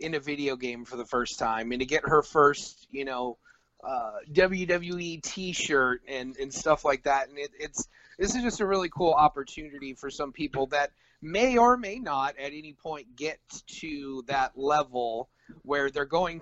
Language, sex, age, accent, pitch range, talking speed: English, male, 30-49, American, 130-175 Hz, 185 wpm